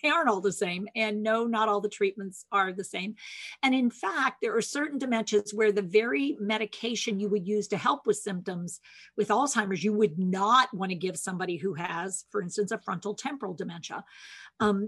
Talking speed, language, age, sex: 200 wpm, English, 50-69, female